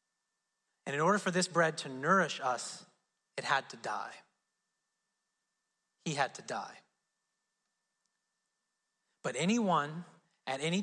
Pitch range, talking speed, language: 180-235 Hz, 110 wpm, English